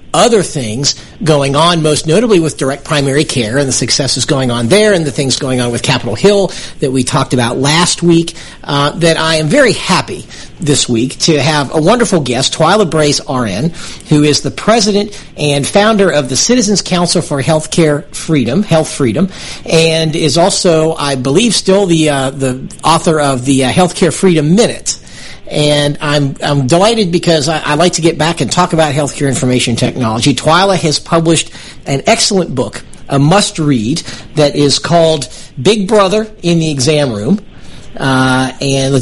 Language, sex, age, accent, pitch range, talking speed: English, male, 50-69, American, 135-175 Hz, 175 wpm